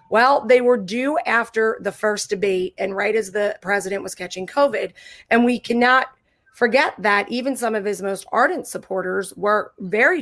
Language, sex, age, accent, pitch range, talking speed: English, female, 30-49, American, 205-250 Hz, 175 wpm